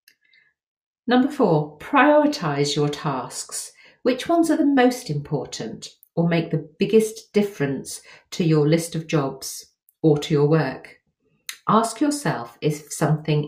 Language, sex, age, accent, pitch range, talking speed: English, female, 40-59, British, 145-205 Hz, 130 wpm